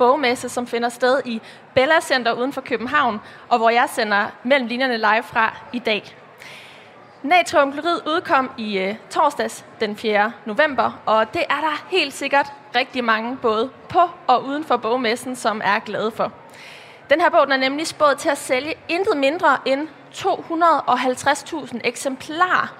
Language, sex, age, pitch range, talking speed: Danish, female, 20-39, 230-295 Hz, 160 wpm